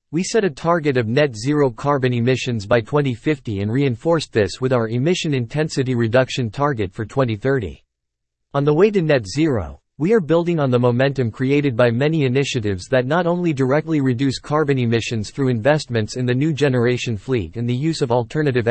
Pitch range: 120-150 Hz